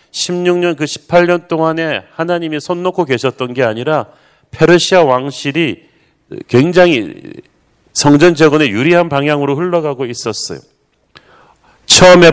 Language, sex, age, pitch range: Korean, male, 40-59, 135-160 Hz